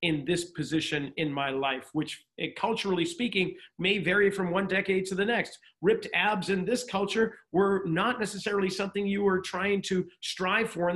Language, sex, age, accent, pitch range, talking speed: English, male, 40-59, American, 175-235 Hz, 185 wpm